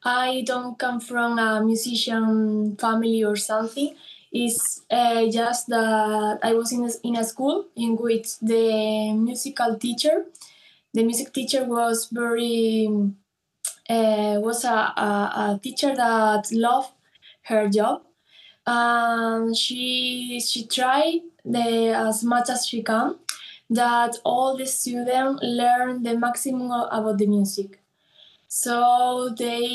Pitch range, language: 220-250 Hz, English